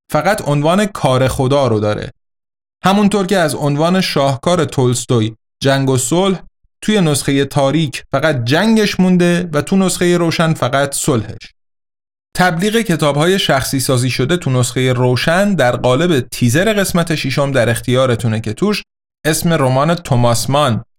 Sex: male